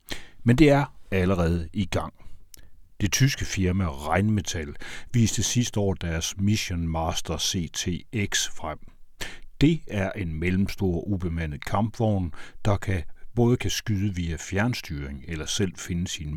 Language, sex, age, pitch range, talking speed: Danish, male, 60-79, 80-105 Hz, 130 wpm